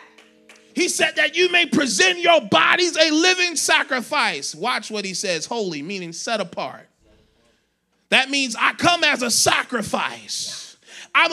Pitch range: 240-320 Hz